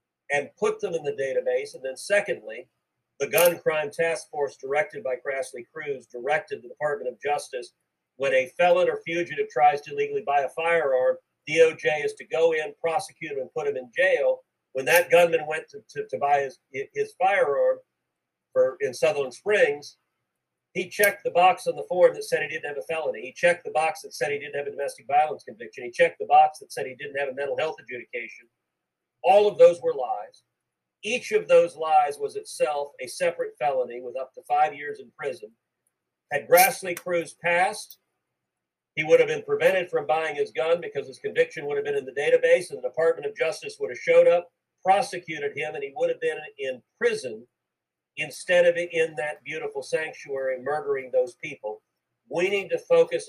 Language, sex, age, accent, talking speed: English, male, 50-69, American, 195 wpm